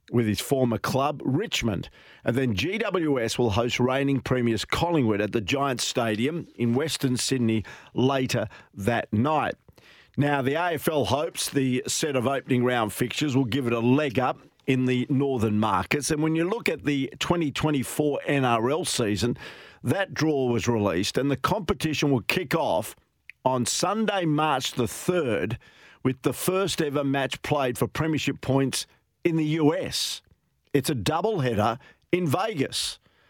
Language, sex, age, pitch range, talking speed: English, male, 50-69, 120-145 Hz, 150 wpm